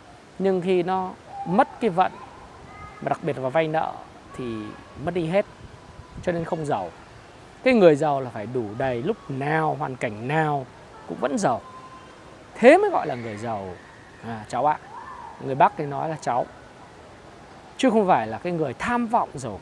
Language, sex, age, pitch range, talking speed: Vietnamese, male, 20-39, 160-220 Hz, 175 wpm